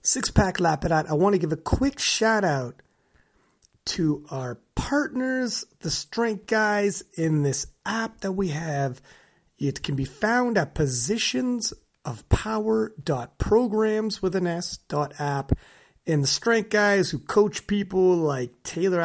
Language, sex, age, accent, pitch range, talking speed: English, male, 30-49, American, 140-205 Hz, 135 wpm